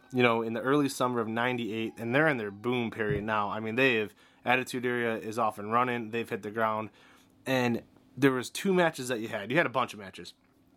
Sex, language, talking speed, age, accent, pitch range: male, English, 240 wpm, 20-39, American, 110-135 Hz